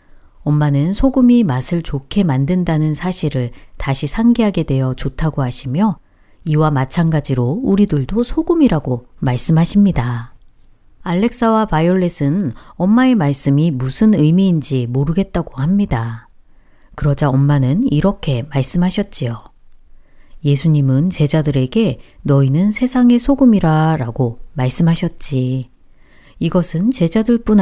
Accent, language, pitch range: native, Korean, 130-190 Hz